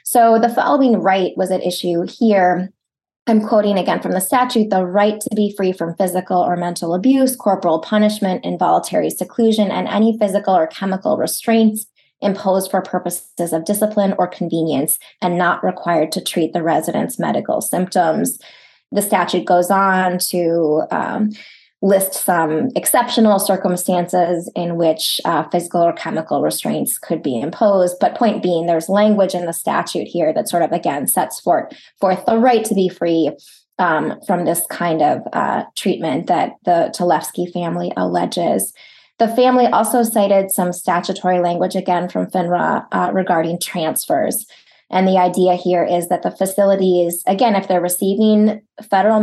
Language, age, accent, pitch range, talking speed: English, 20-39, American, 175-210 Hz, 155 wpm